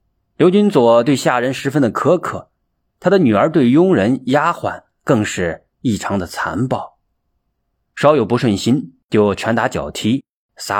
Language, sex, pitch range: Chinese, male, 110-165 Hz